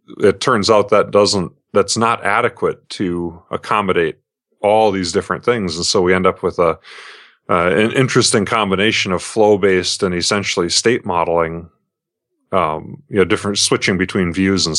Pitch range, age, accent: 90-110 Hz, 30-49, American